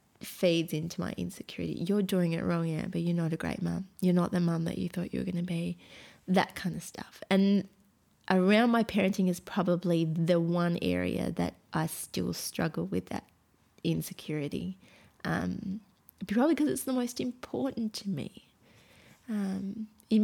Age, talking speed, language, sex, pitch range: 20-39, 170 wpm, English, female, 170-200 Hz